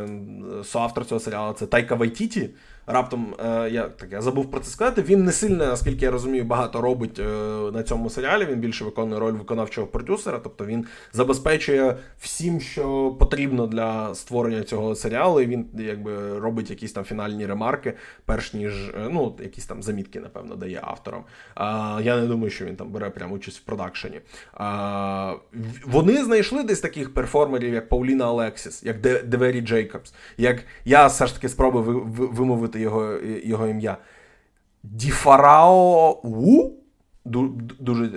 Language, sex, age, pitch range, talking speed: Ukrainian, male, 20-39, 110-135 Hz, 150 wpm